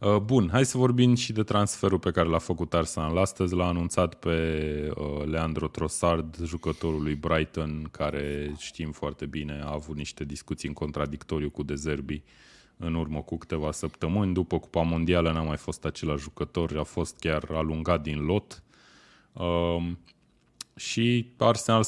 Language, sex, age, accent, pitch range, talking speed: Romanian, male, 20-39, native, 75-100 Hz, 150 wpm